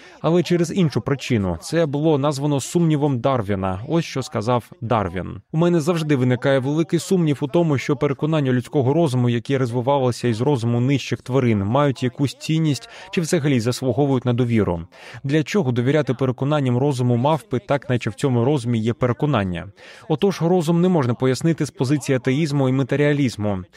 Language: Russian